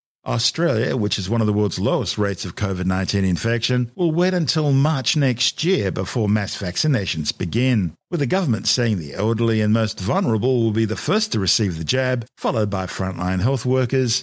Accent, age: Australian, 50-69